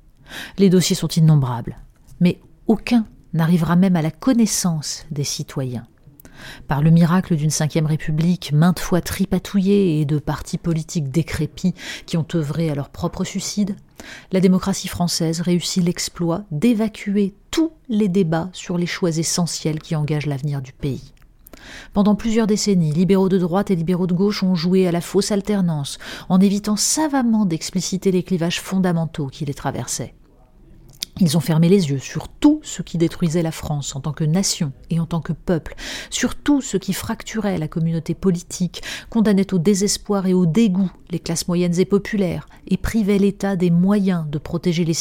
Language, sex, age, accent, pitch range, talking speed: French, female, 40-59, French, 160-195 Hz, 170 wpm